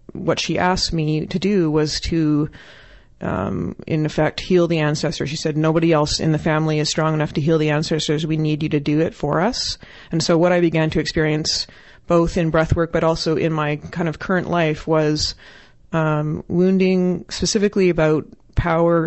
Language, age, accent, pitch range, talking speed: English, 30-49, American, 155-170 Hz, 190 wpm